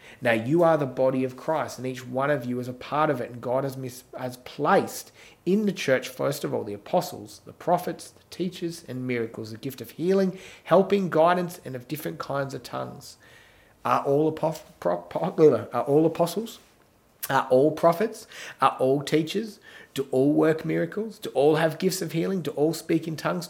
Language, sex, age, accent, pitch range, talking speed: English, male, 30-49, Australian, 115-165 Hz, 185 wpm